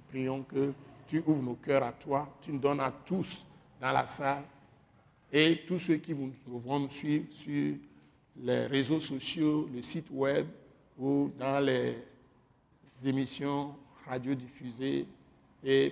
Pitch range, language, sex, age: 135-155 Hz, French, male, 60-79